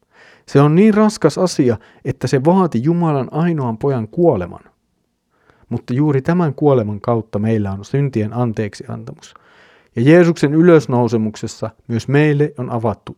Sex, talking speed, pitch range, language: male, 125 wpm, 110-150 Hz, Finnish